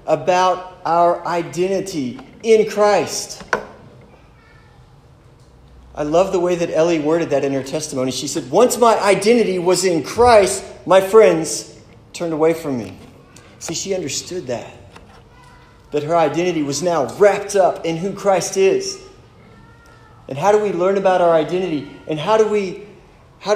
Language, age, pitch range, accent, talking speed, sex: English, 30-49, 145-190 Hz, American, 150 wpm, male